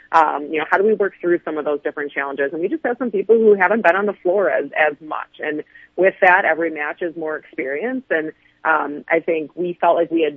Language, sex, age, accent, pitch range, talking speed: English, female, 30-49, American, 150-175 Hz, 260 wpm